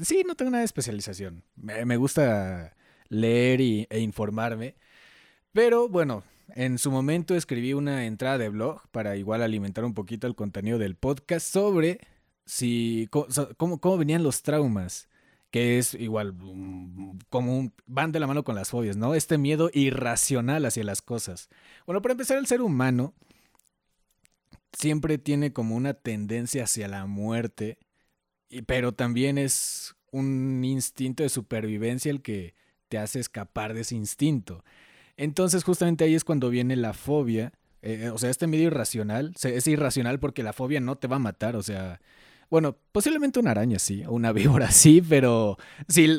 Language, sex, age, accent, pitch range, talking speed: Spanish, male, 30-49, Mexican, 110-150 Hz, 160 wpm